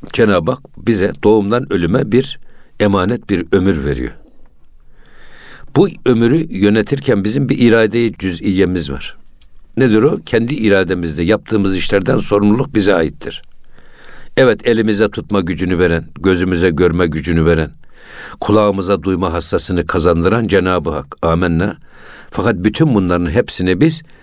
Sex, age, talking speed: male, 60-79, 120 wpm